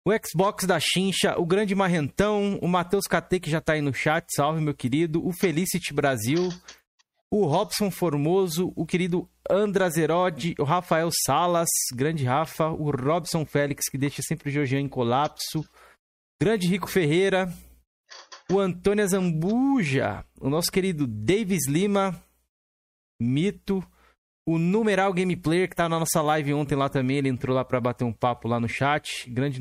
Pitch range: 140-180 Hz